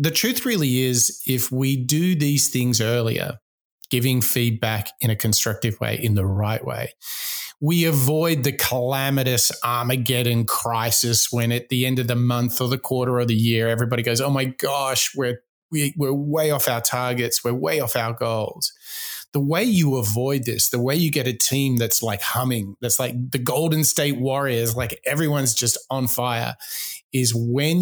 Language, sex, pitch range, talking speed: English, male, 120-145 Hz, 175 wpm